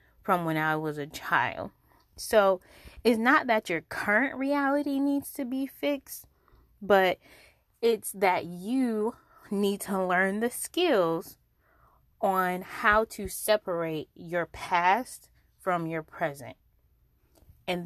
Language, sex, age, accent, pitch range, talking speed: English, female, 20-39, American, 155-195 Hz, 120 wpm